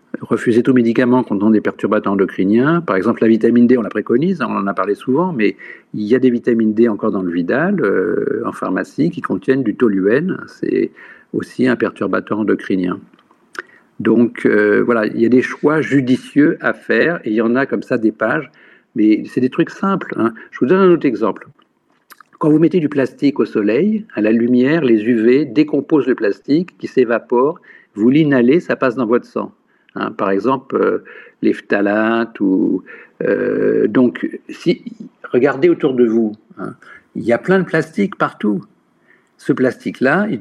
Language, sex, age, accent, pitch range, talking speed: French, male, 50-69, French, 110-155 Hz, 185 wpm